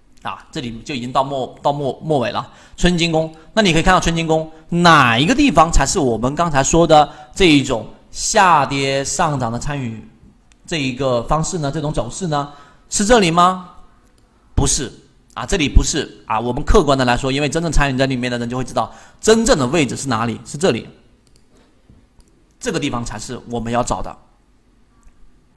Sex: male